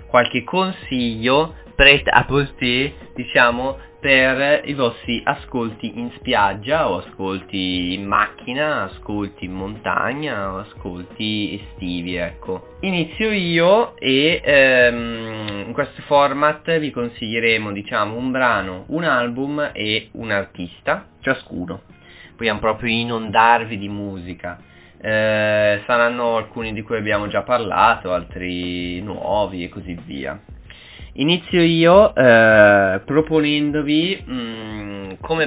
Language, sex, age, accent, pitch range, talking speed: Italian, male, 20-39, native, 105-140 Hz, 110 wpm